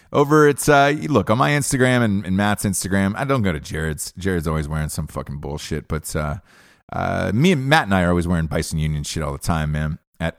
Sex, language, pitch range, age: male, English, 90-130 Hz, 30-49